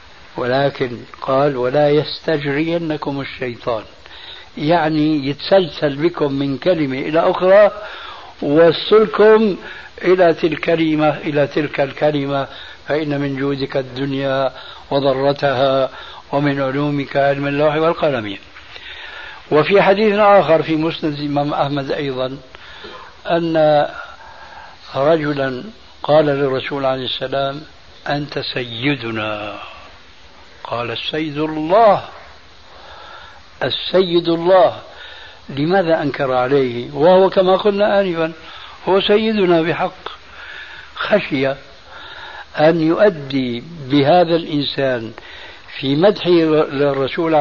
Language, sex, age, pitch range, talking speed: Arabic, male, 60-79, 135-165 Hz, 85 wpm